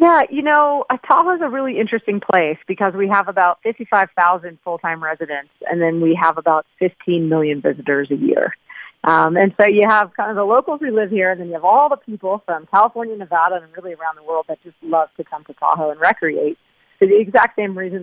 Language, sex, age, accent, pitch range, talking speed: English, female, 30-49, American, 160-200 Hz, 225 wpm